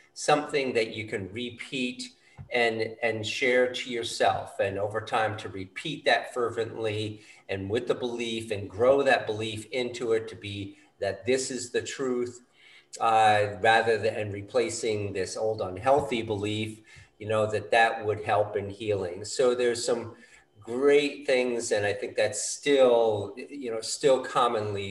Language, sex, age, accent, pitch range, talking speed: English, male, 50-69, American, 105-130 Hz, 155 wpm